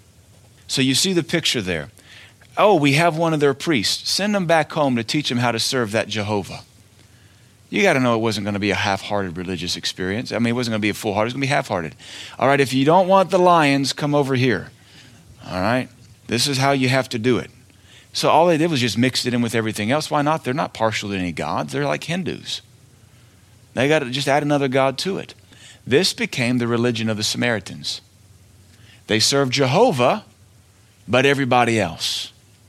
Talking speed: 220 wpm